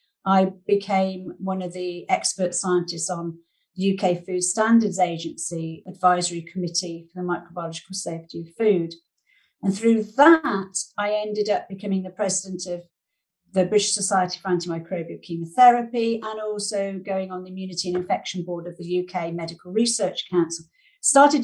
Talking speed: 150 wpm